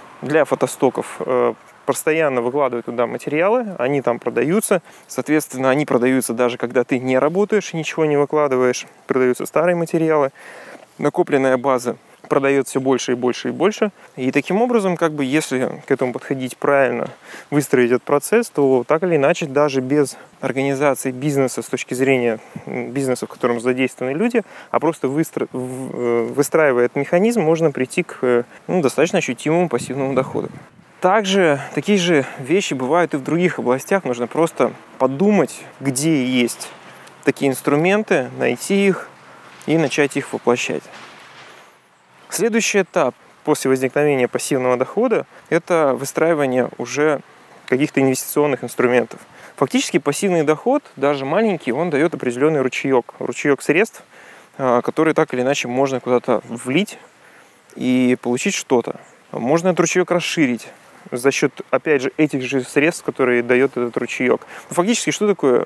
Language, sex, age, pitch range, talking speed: Russian, male, 30-49, 125-160 Hz, 135 wpm